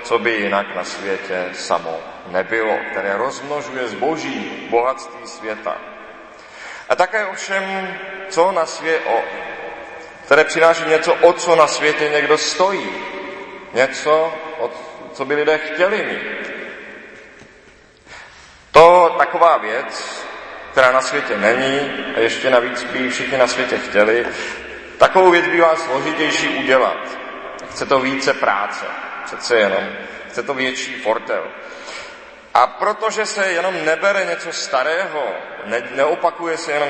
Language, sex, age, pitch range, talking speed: Czech, male, 40-59, 120-165 Hz, 120 wpm